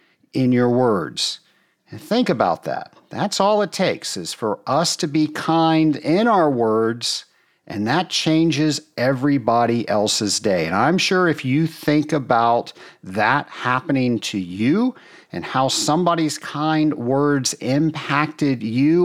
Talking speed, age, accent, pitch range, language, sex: 140 wpm, 50-69, American, 120-170 Hz, English, male